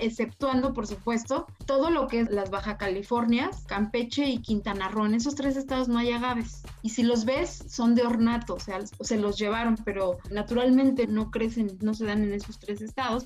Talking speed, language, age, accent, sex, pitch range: 200 wpm, Spanish, 30-49, Mexican, female, 220-270 Hz